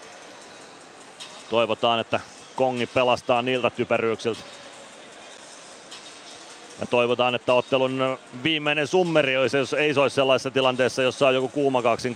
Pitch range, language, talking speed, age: 120-140 Hz, Finnish, 115 wpm, 30-49